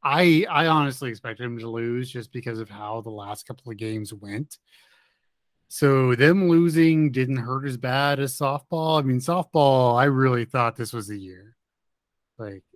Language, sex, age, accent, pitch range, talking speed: English, male, 30-49, American, 115-145 Hz, 175 wpm